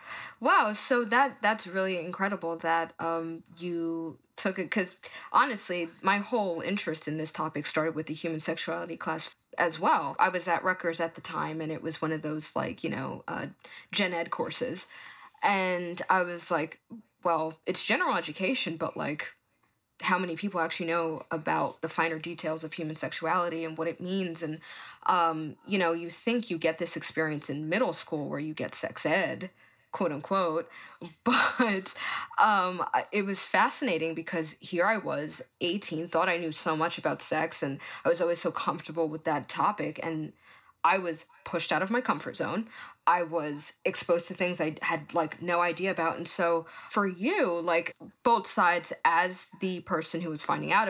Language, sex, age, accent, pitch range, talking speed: English, female, 20-39, American, 160-190 Hz, 180 wpm